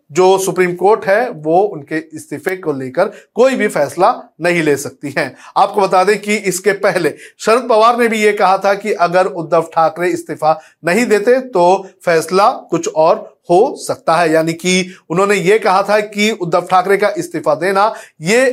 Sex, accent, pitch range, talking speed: male, native, 175-220 Hz, 180 wpm